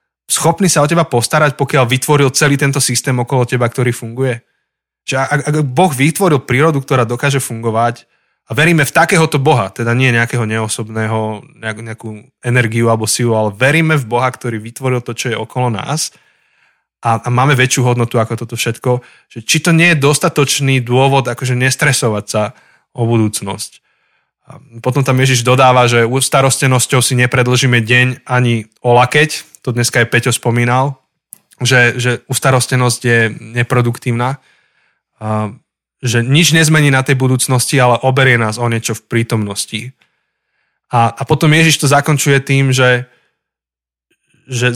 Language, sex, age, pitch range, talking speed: Slovak, male, 20-39, 115-140 Hz, 150 wpm